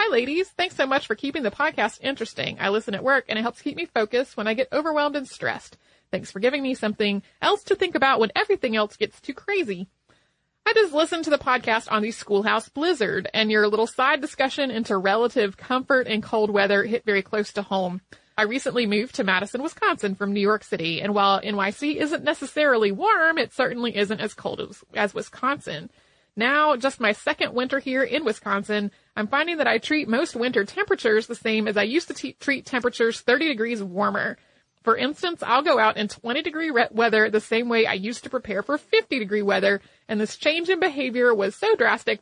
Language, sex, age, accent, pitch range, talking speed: English, female, 30-49, American, 210-285 Hz, 205 wpm